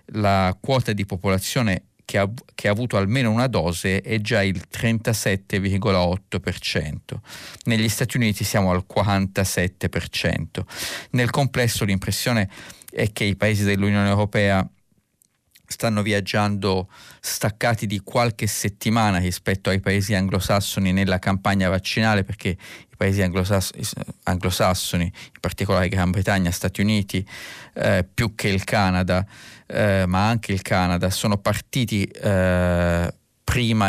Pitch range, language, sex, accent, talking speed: 95-110 Hz, Italian, male, native, 120 wpm